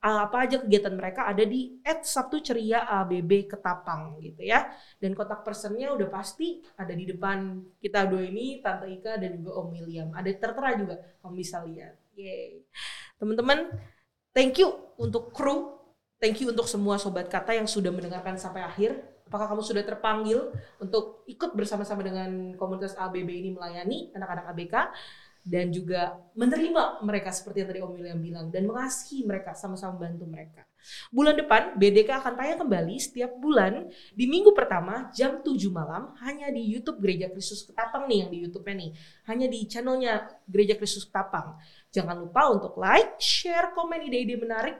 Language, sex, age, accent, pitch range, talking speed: Indonesian, female, 20-39, native, 185-255 Hz, 165 wpm